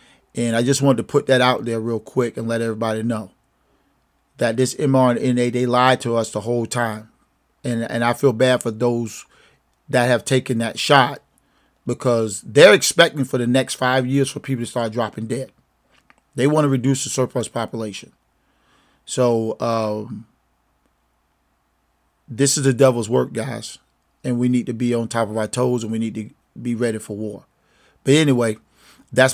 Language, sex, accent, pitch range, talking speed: English, male, American, 115-130 Hz, 180 wpm